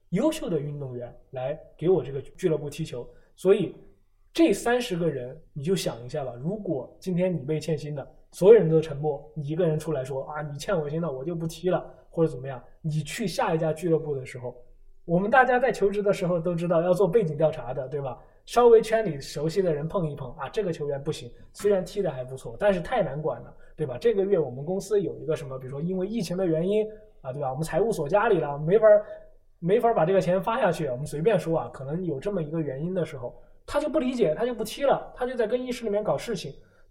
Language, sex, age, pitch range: Chinese, male, 20-39, 140-190 Hz